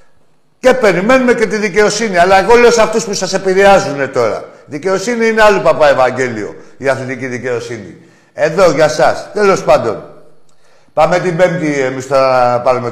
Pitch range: 115-160 Hz